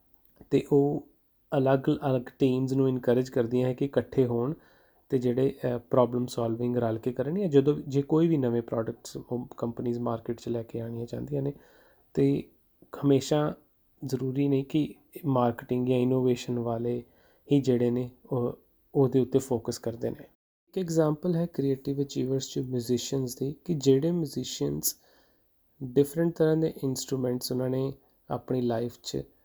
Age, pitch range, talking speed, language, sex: 30-49, 125-145 Hz, 110 wpm, Punjabi, male